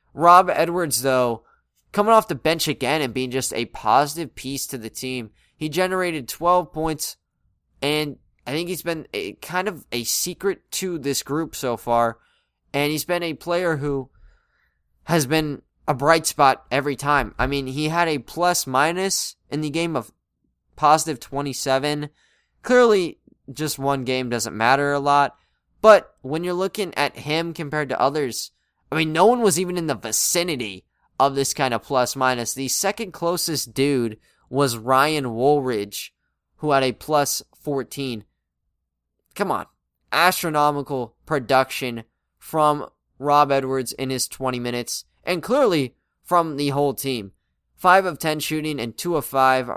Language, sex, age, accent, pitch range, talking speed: English, male, 20-39, American, 130-160 Hz, 155 wpm